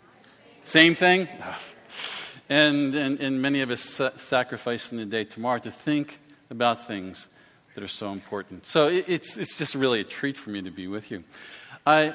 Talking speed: 175 wpm